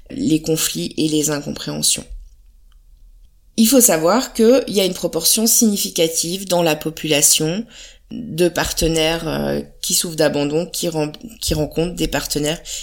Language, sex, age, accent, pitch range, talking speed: French, female, 20-39, French, 160-195 Hz, 130 wpm